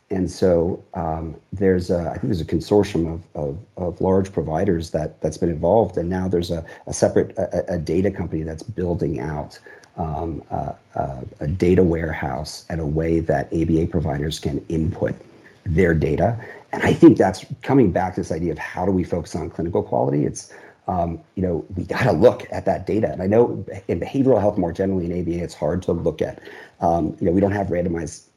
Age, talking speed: 40-59, 205 wpm